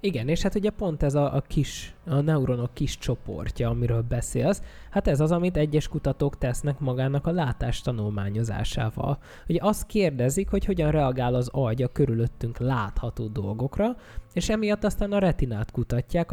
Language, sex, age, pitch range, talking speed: Hungarian, male, 20-39, 120-155 Hz, 160 wpm